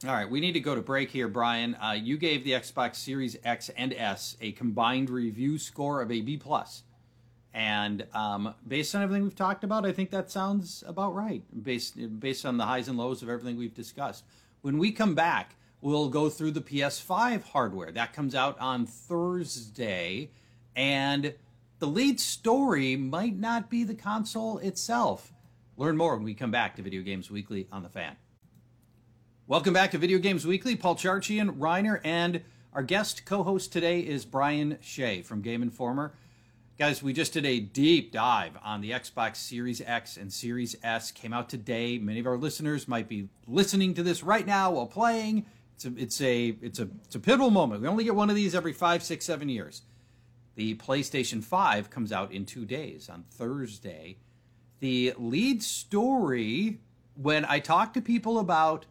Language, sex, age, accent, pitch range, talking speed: English, male, 40-59, American, 120-175 Hz, 180 wpm